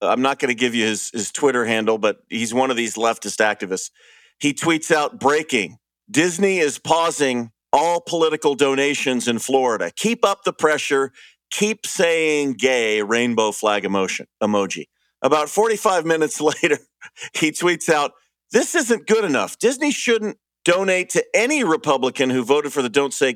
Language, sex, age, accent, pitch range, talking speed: English, male, 50-69, American, 125-195 Hz, 160 wpm